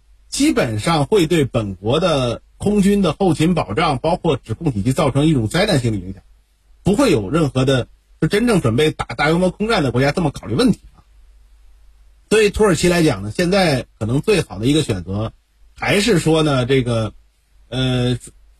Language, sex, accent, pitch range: Chinese, male, native, 125-190 Hz